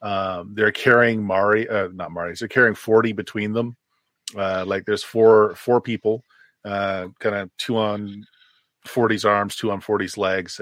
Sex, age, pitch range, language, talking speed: male, 40-59, 100-120 Hz, English, 165 wpm